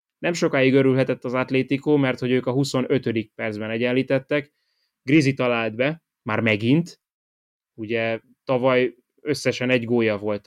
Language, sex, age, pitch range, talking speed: Hungarian, male, 20-39, 110-135 Hz, 130 wpm